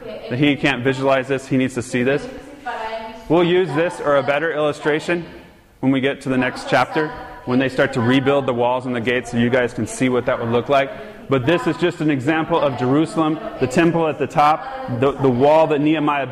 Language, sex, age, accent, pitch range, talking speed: English, male, 30-49, American, 125-155 Hz, 225 wpm